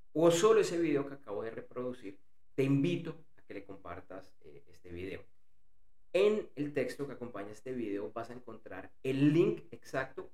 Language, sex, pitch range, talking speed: Spanish, male, 95-150 Hz, 175 wpm